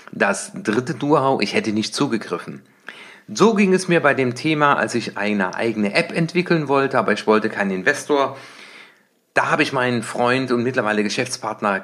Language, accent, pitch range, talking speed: German, German, 120-155 Hz, 170 wpm